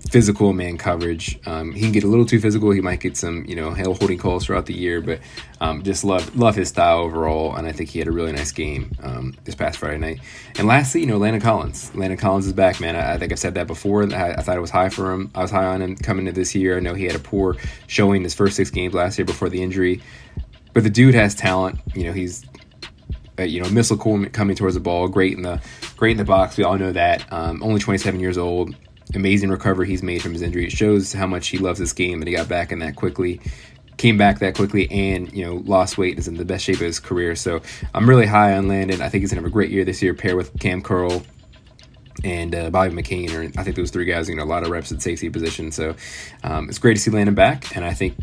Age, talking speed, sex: 20-39, 275 wpm, male